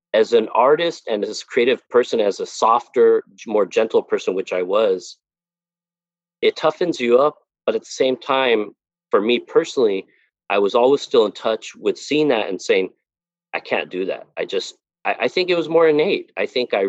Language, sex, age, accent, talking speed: English, male, 40-59, American, 200 wpm